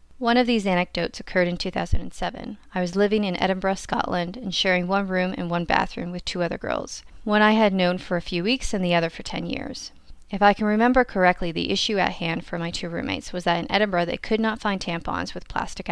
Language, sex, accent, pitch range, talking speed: English, female, American, 180-215 Hz, 235 wpm